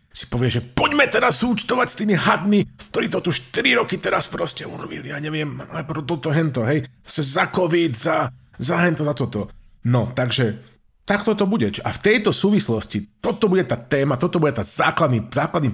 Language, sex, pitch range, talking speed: Slovak, male, 110-155 Hz, 190 wpm